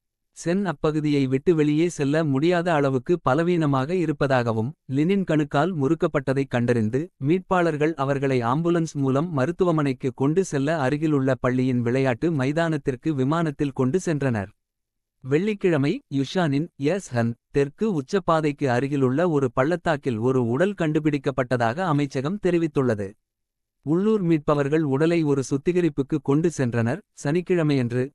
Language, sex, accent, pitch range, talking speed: Tamil, male, native, 130-165 Hz, 100 wpm